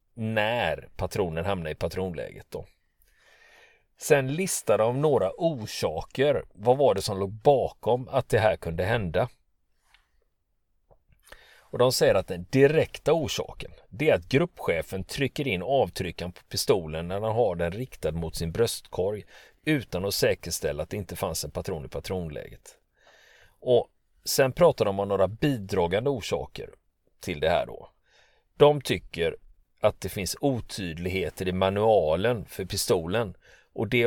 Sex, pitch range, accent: male, 90-125 Hz, native